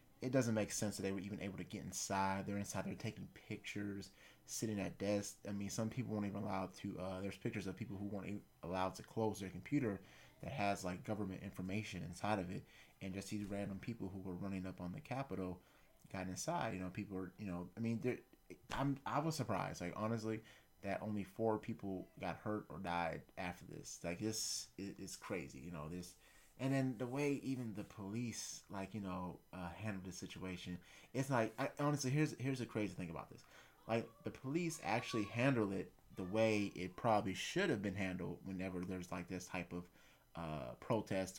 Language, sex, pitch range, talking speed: English, male, 95-110 Hz, 205 wpm